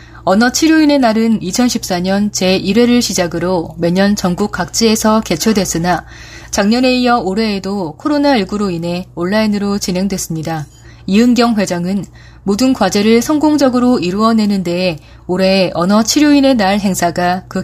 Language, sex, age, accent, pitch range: Korean, female, 20-39, native, 180-230 Hz